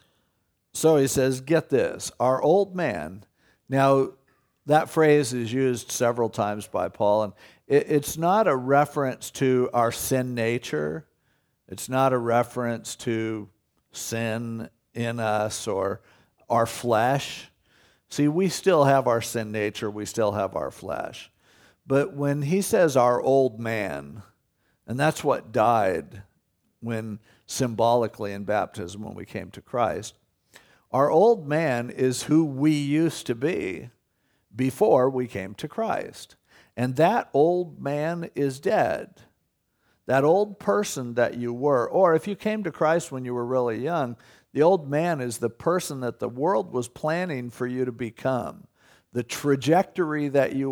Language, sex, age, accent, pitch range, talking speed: English, male, 50-69, American, 115-150 Hz, 150 wpm